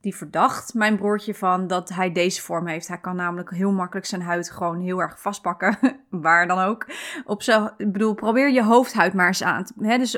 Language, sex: Dutch, female